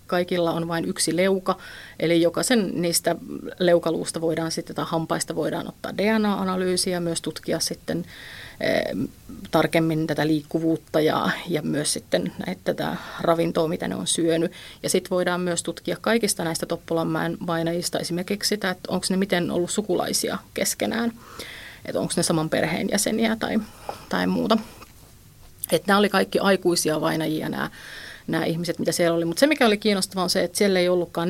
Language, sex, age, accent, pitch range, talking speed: Finnish, female, 30-49, native, 160-190 Hz, 160 wpm